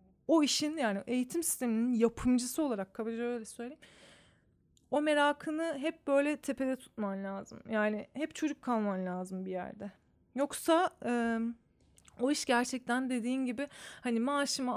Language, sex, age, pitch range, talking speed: Turkish, female, 30-49, 225-285 Hz, 135 wpm